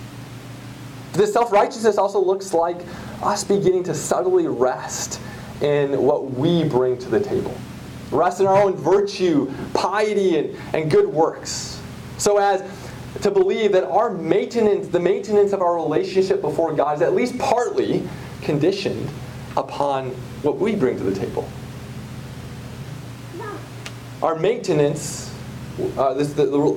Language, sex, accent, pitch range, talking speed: English, male, American, 125-195 Hz, 130 wpm